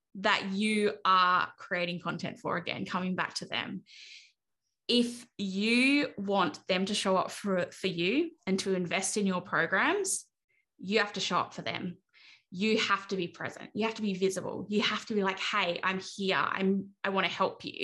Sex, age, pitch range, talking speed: female, 10-29, 185-215 Hz, 190 wpm